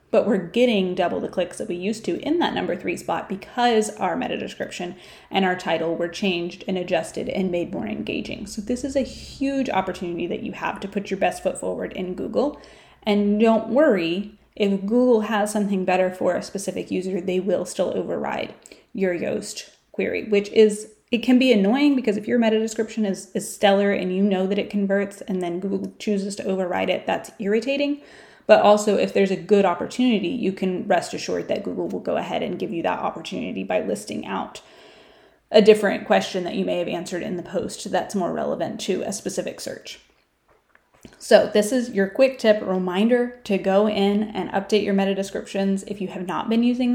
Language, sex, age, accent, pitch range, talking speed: English, female, 30-49, American, 190-225 Hz, 200 wpm